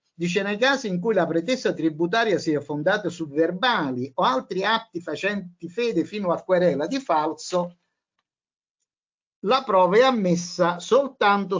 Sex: male